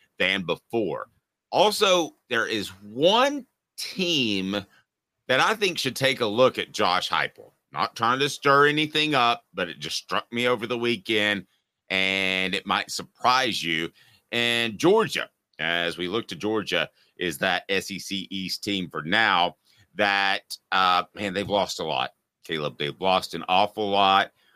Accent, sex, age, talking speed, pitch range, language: American, male, 40-59, 155 wpm, 85-115 Hz, English